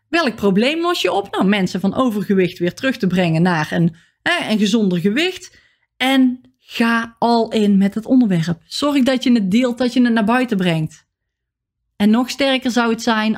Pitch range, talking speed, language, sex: 180-225 Hz, 190 wpm, Dutch, female